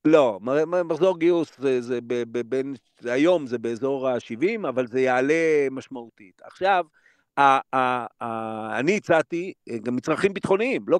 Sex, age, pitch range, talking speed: male, 50-69, 130-175 Hz, 145 wpm